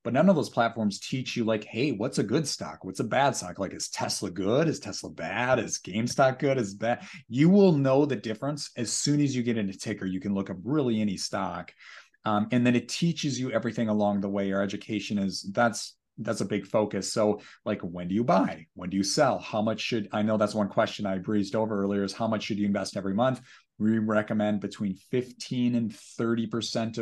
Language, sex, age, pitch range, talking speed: English, male, 30-49, 105-125 Hz, 225 wpm